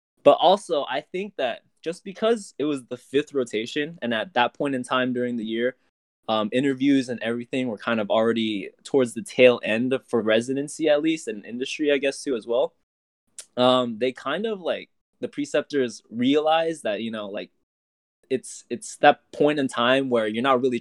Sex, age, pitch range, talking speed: male, 20-39, 110-150 Hz, 190 wpm